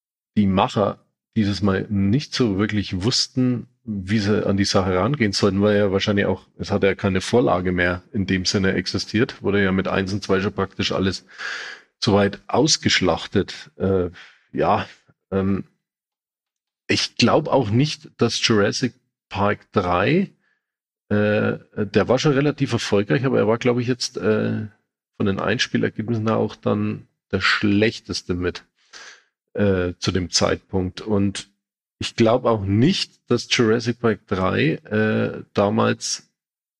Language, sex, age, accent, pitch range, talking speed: German, male, 40-59, German, 95-110 Hz, 145 wpm